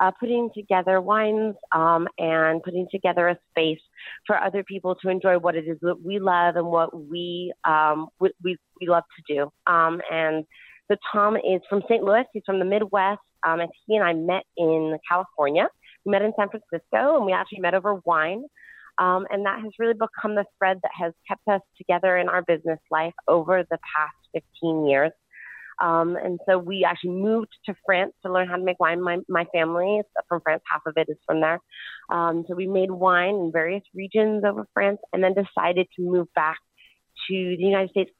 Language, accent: English, American